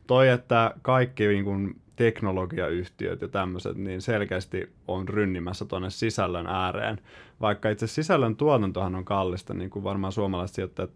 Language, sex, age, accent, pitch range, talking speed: Finnish, male, 20-39, native, 90-115 Hz, 140 wpm